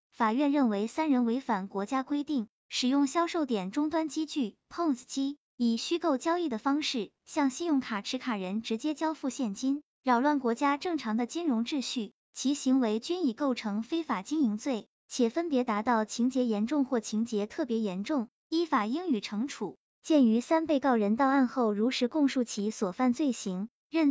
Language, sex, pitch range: Chinese, male, 225-295 Hz